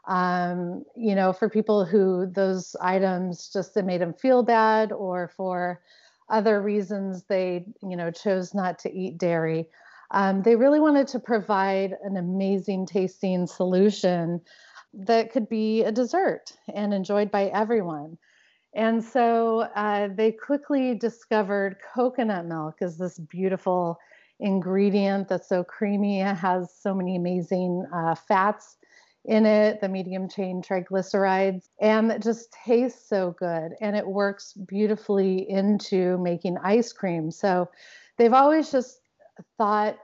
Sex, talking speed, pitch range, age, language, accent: female, 135 wpm, 180-215 Hz, 30-49, English, American